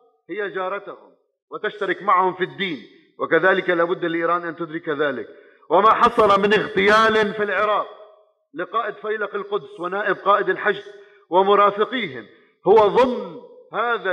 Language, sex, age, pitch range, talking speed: Arabic, male, 50-69, 190-250 Hz, 120 wpm